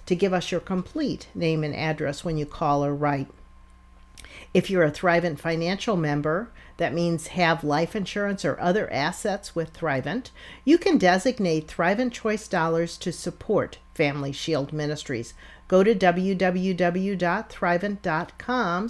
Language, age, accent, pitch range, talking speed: English, 50-69, American, 165-215 Hz, 135 wpm